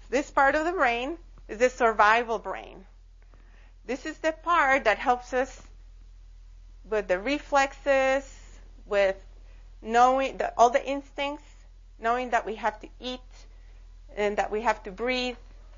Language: English